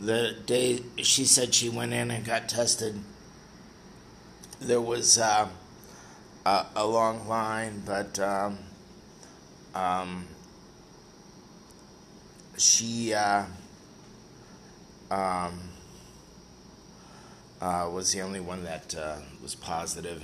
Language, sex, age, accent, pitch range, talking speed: English, male, 30-49, American, 95-120 Hz, 95 wpm